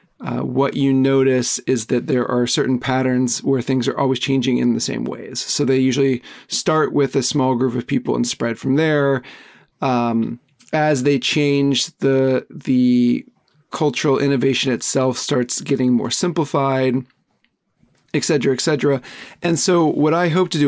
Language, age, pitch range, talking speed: English, 40-59, 130-150 Hz, 165 wpm